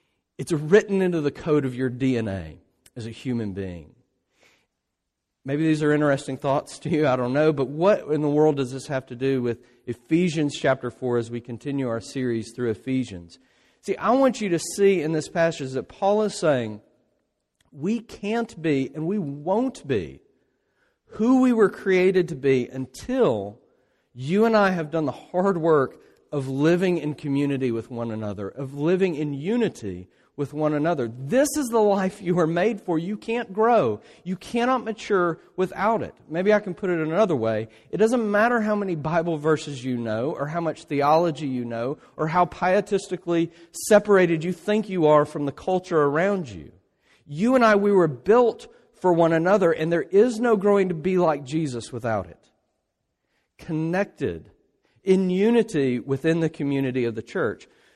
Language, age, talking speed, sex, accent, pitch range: English, 40-59, 180 wpm, male, American, 135-195 Hz